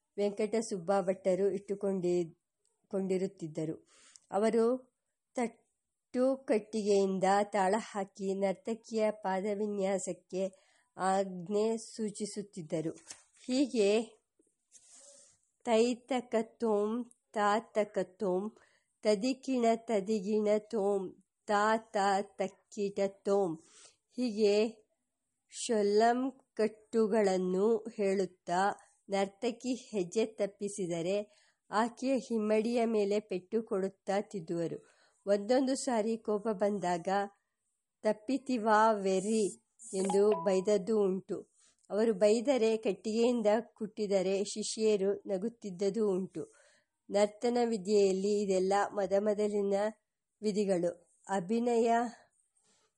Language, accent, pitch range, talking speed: English, Indian, 195-225 Hz, 60 wpm